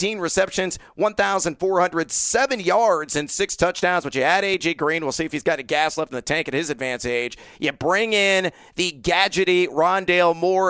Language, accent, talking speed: English, American, 185 wpm